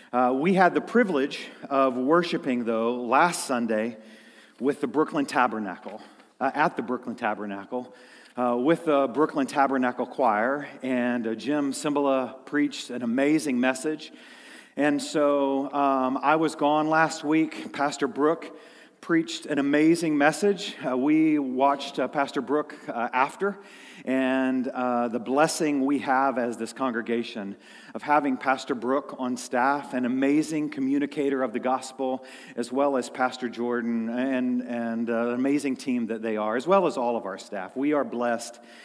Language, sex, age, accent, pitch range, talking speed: English, male, 40-59, American, 120-150 Hz, 155 wpm